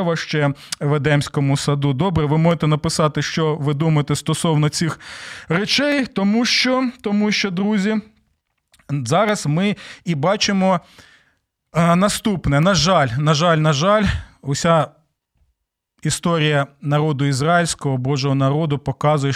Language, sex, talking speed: Ukrainian, male, 115 wpm